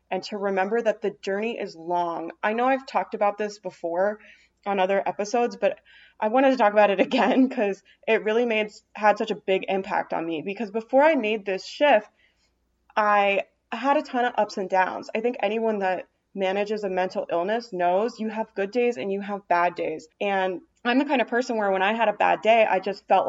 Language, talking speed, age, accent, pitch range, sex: English, 220 wpm, 20-39, American, 185-230 Hz, female